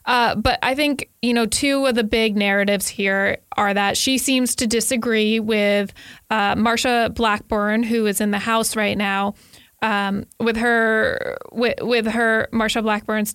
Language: English